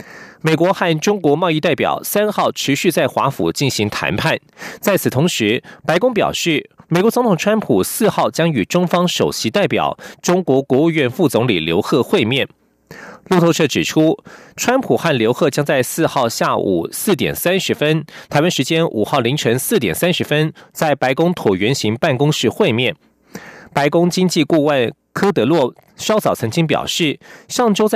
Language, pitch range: German, 130-180 Hz